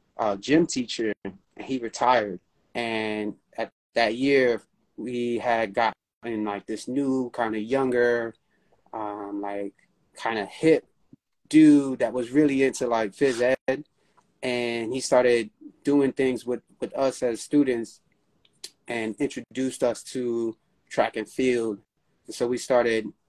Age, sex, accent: 30-49, male, American